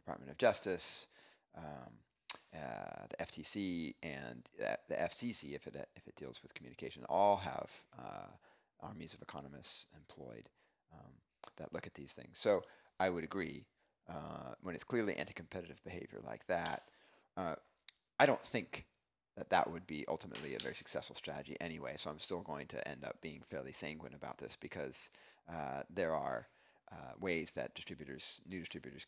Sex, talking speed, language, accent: male, 160 wpm, English, American